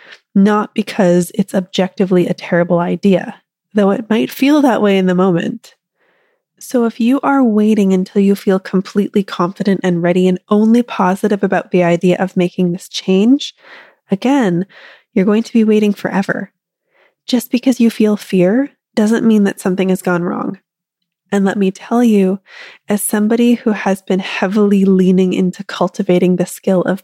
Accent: American